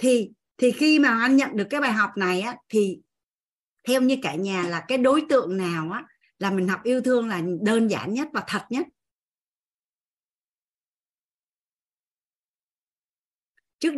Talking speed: 155 wpm